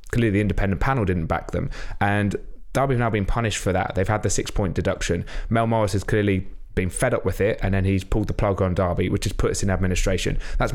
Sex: male